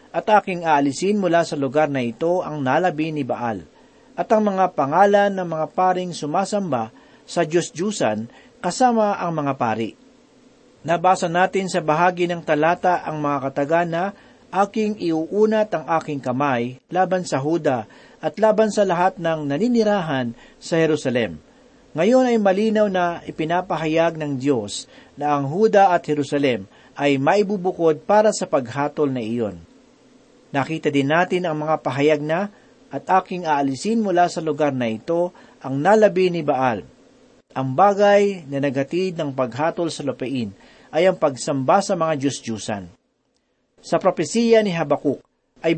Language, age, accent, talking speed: Filipino, 40-59, native, 145 wpm